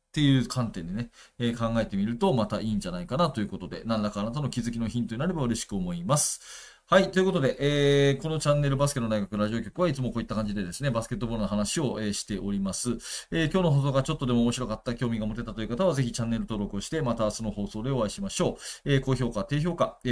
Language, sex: Japanese, male